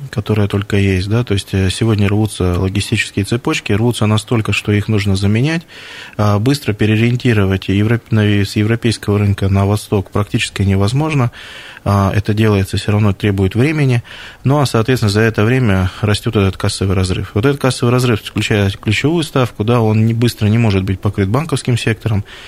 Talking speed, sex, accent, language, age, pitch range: 150 wpm, male, native, Russian, 20-39, 100-120 Hz